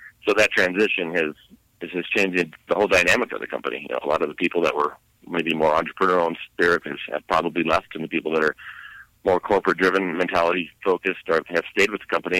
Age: 40-59